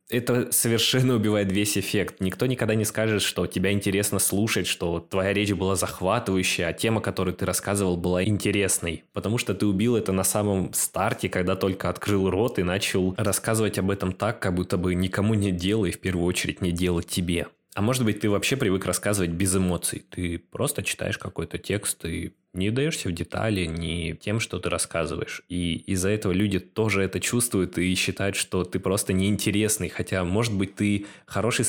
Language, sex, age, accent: Russian, male, 20-39, native